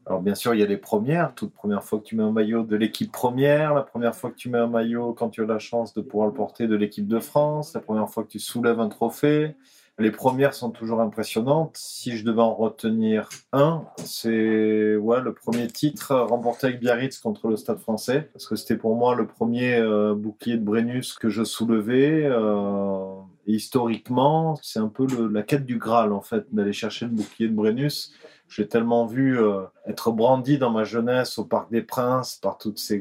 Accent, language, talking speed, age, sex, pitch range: French, French, 215 wpm, 30-49, male, 105-125 Hz